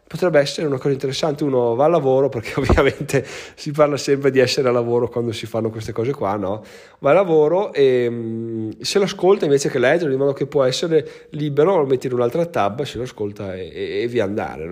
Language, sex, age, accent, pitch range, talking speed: Italian, male, 20-39, native, 120-150 Hz, 230 wpm